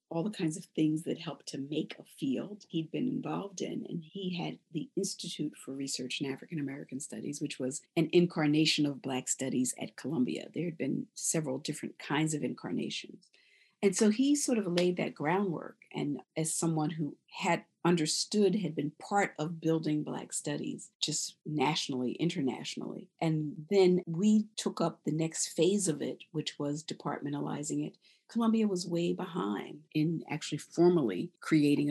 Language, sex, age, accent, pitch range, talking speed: English, female, 50-69, American, 150-195 Hz, 165 wpm